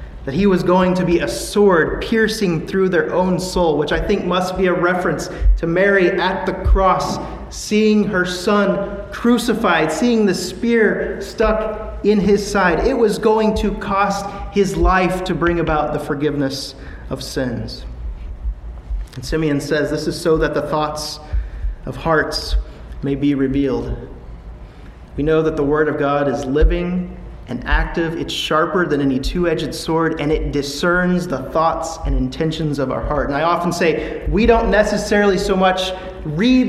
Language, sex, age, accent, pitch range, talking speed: English, male, 30-49, American, 145-195 Hz, 165 wpm